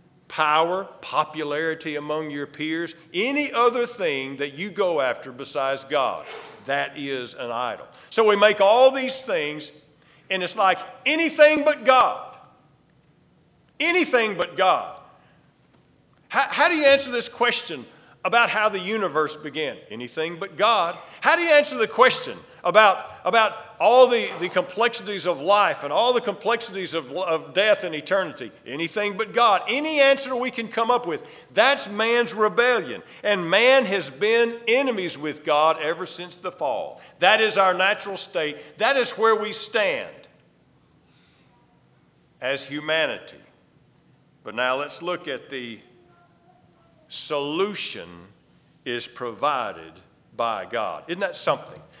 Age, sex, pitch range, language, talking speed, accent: 50-69, male, 155-235 Hz, English, 140 wpm, American